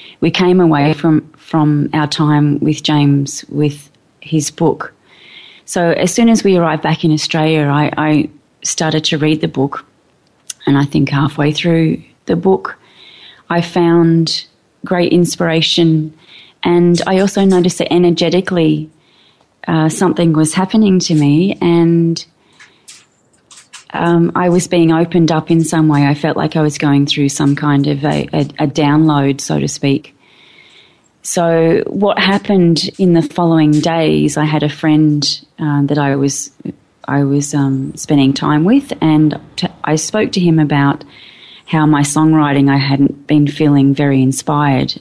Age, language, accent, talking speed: 30-49, English, Australian, 155 wpm